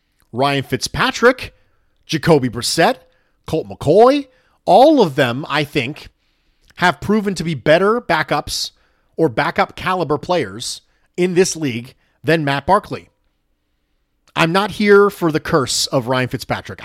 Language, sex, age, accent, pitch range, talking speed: English, male, 40-59, American, 115-165 Hz, 130 wpm